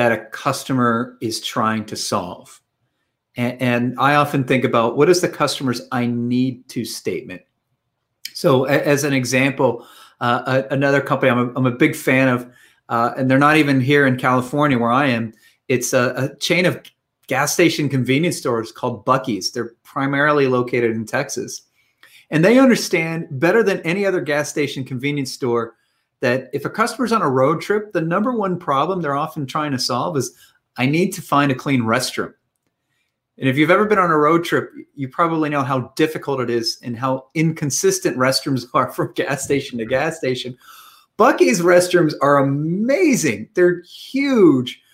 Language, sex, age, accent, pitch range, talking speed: English, male, 40-59, American, 125-165 Hz, 180 wpm